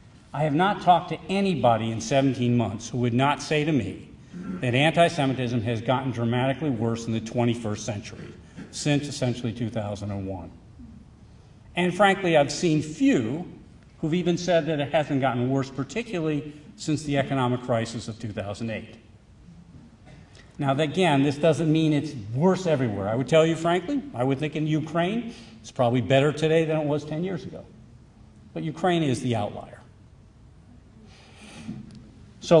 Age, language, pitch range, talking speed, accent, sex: 50-69, English, 120-155 Hz, 150 wpm, American, male